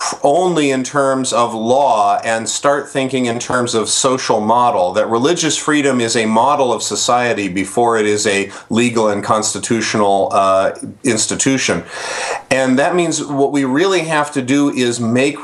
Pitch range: 115-140 Hz